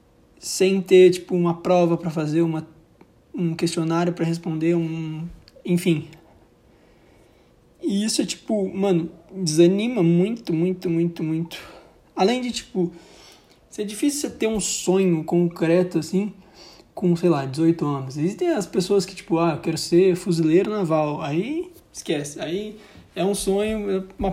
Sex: male